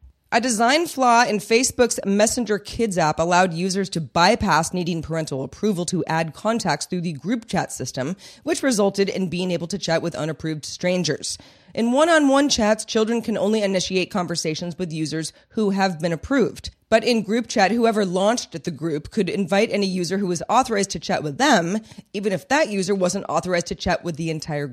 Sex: female